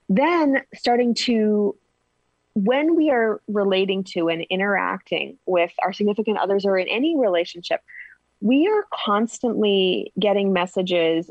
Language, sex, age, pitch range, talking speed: English, female, 20-39, 180-240 Hz, 120 wpm